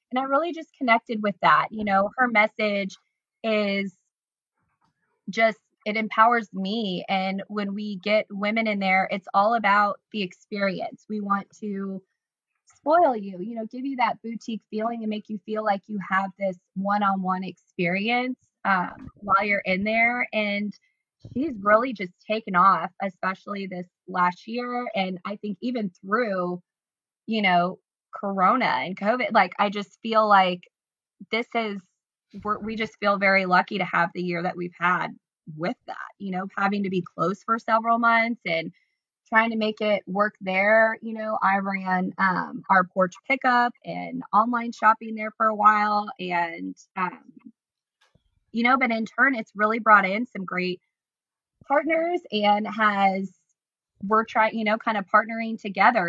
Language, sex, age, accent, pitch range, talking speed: English, female, 20-39, American, 190-225 Hz, 165 wpm